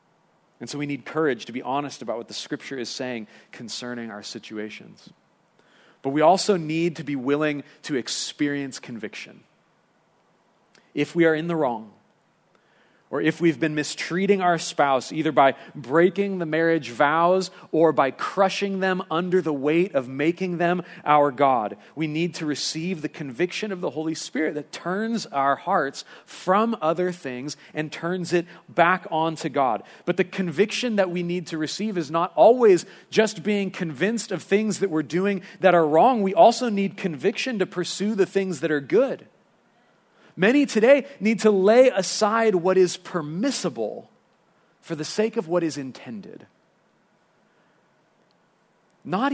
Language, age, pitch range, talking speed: English, 40-59, 145-195 Hz, 160 wpm